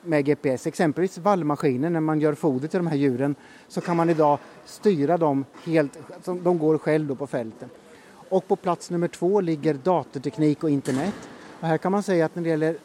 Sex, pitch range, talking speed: male, 150-185 Hz, 200 wpm